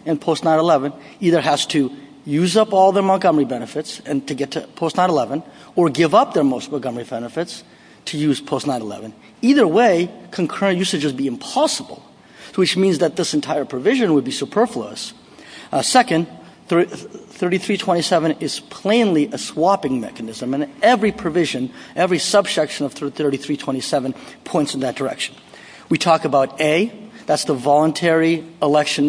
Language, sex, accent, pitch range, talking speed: English, male, American, 135-180 Hz, 150 wpm